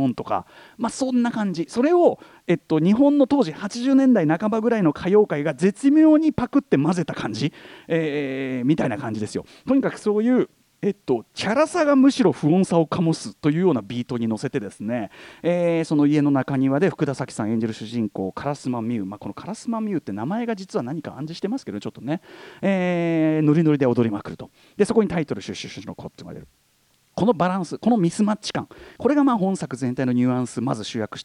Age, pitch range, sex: 40-59, 135-215 Hz, male